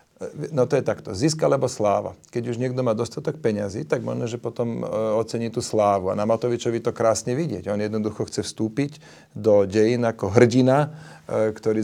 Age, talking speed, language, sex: 40-59, 175 wpm, Slovak, male